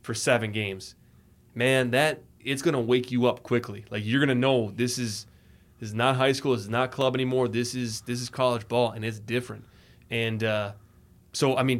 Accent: American